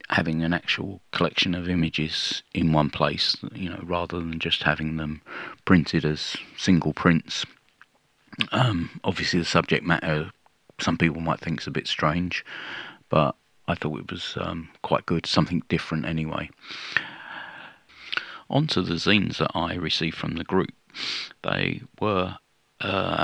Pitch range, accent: 80-90 Hz, British